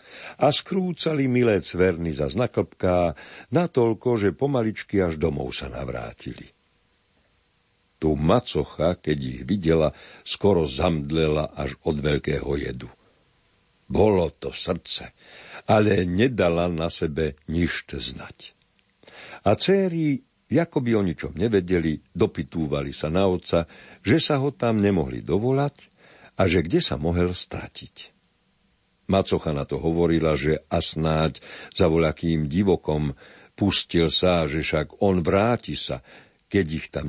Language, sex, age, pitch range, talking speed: Slovak, male, 60-79, 80-105 Hz, 120 wpm